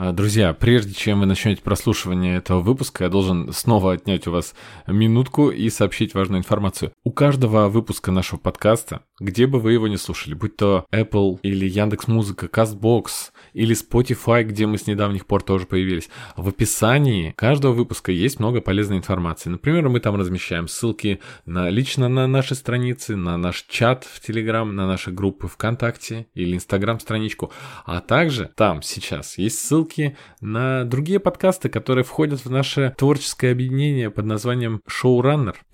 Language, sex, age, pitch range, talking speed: Russian, male, 20-39, 95-125 Hz, 155 wpm